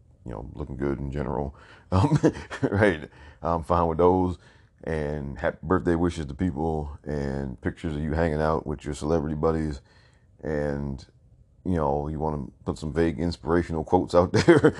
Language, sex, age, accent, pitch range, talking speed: English, male, 40-59, American, 70-95 Hz, 165 wpm